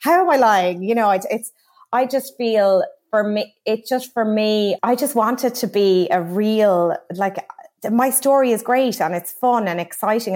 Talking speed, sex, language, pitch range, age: 205 wpm, female, English, 170-210 Hz, 30-49